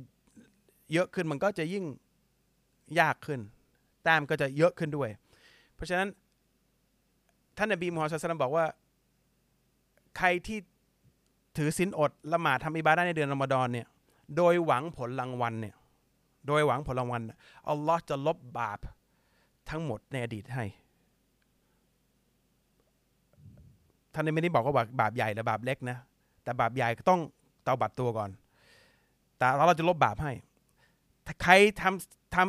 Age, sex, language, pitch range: 30-49, male, Thai, 130-175 Hz